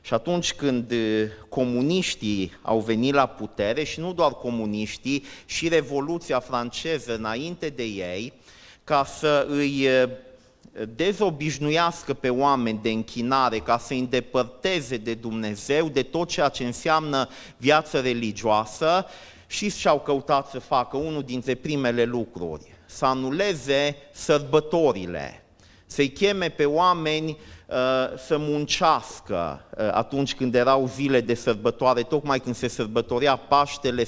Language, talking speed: Romanian, 120 wpm